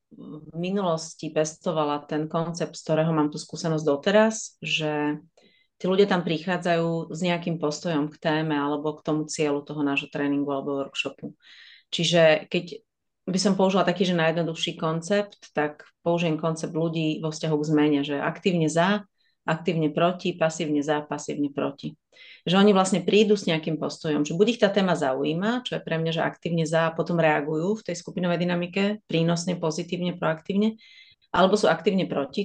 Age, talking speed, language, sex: 30-49, 165 wpm, Slovak, female